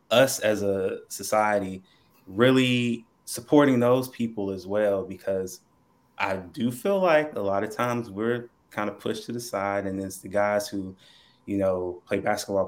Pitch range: 95-115 Hz